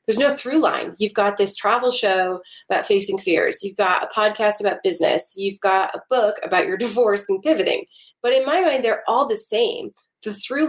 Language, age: English, 30-49